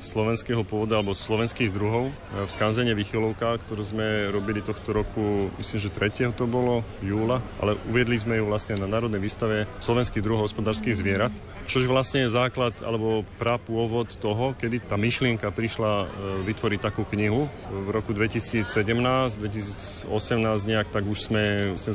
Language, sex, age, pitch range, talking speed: Slovak, male, 30-49, 105-115 Hz, 150 wpm